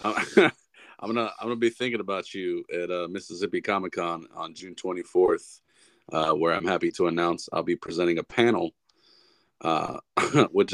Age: 30-49